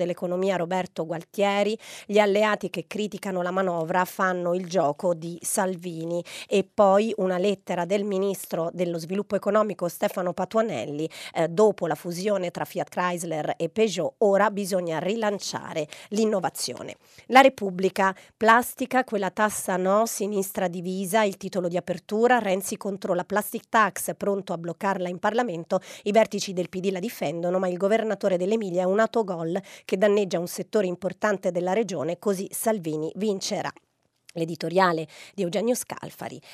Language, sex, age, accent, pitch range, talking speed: Italian, female, 30-49, native, 175-210 Hz, 145 wpm